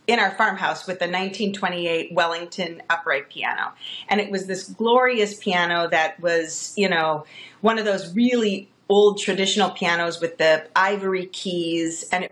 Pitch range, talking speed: 175-215 Hz, 155 wpm